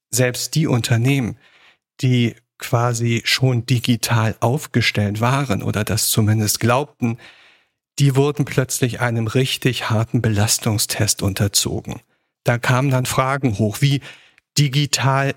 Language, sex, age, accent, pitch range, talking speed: German, male, 50-69, German, 115-140 Hz, 110 wpm